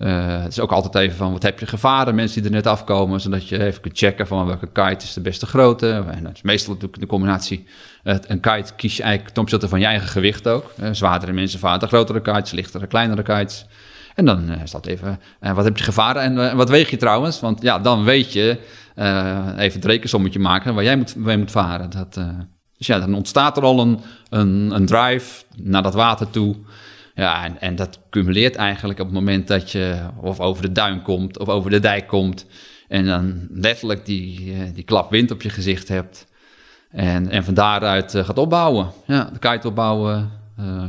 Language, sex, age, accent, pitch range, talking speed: Dutch, male, 40-59, Dutch, 95-110 Hz, 220 wpm